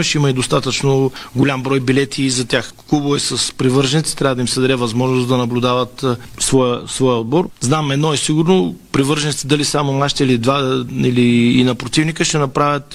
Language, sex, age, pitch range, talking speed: Bulgarian, male, 40-59, 130-150 Hz, 200 wpm